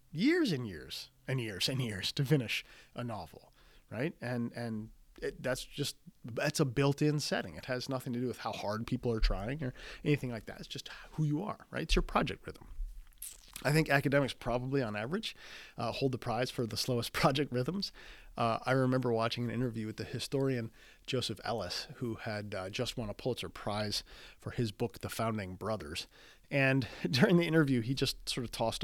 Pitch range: 110-145 Hz